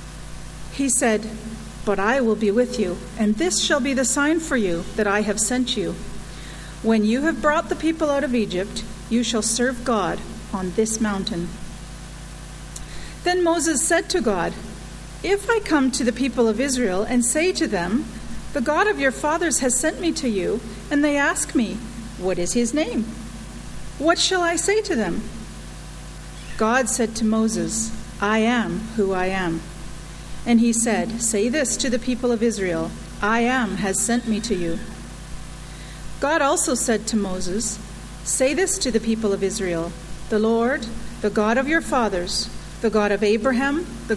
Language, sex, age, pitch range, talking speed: English, female, 40-59, 200-270 Hz, 175 wpm